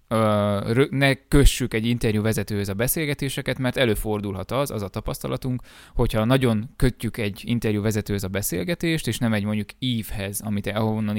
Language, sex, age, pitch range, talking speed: Hungarian, male, 20-39, 105-125 Hz, 145 wpm